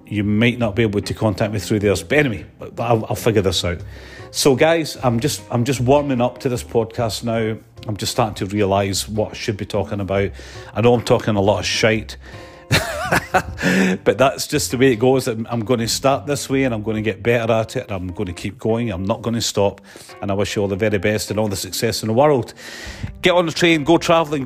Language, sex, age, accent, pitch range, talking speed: English, male, 40-59, British, 105-130 Hz, 250 wpm